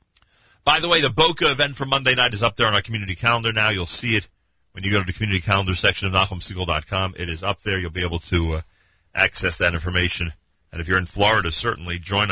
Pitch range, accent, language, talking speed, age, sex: 90-130 Hz, American, English, 240 wpm, 40-59, male